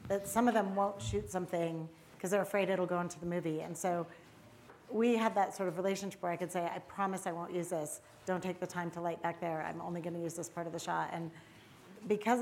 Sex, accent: female, American